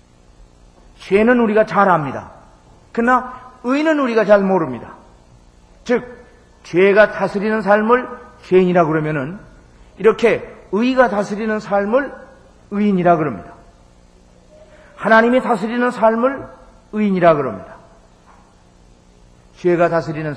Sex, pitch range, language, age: male, 155-245 Hz, Korean, 40-59